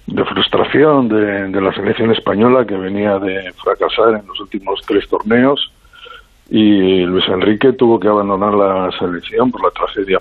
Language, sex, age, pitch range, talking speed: Spanish, male, 60-79, 105-130 Hz, 160 wpm